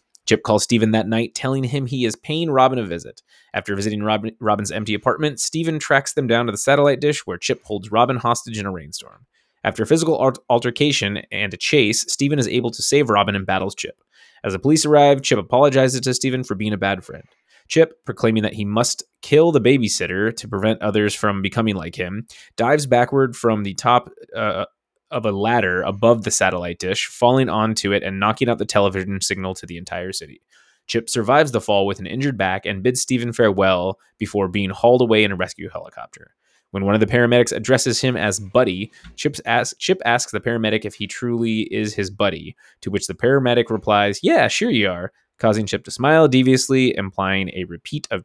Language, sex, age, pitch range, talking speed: English, male, 20-39, 100-125 Hz, 205 wpm